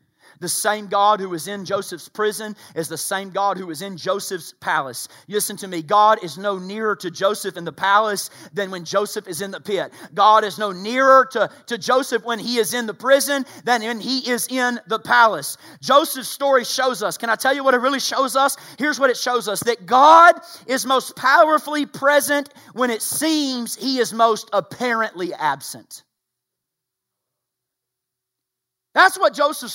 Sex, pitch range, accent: male, 215-285 Hz, American